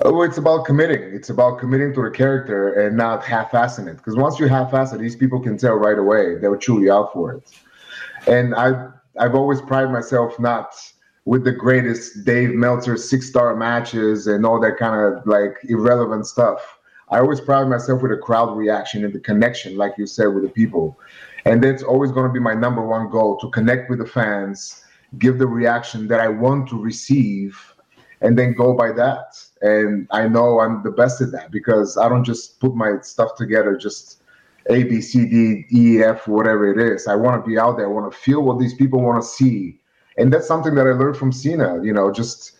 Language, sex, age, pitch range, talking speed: English, male, 30-49, 110-130 Hz, 215 wpm